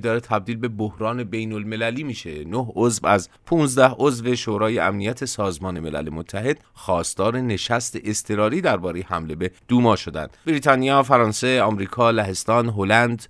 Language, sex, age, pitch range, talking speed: English, male, 30-49, 100-125 Hz, 135 wpm